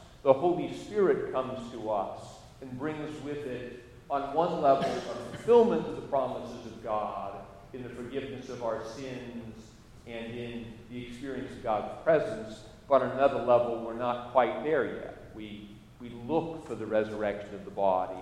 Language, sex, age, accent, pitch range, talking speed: English, male, 40-59, American, 115-145 Hz, 170 wpm